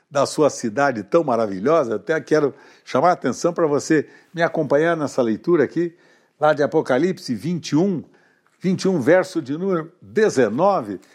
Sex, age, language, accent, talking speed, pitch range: male, 60-79, Portuguese, Brazilian, 140 wpm, 135-185 Hz